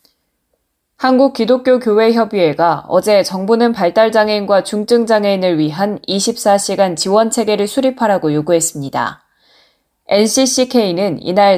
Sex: female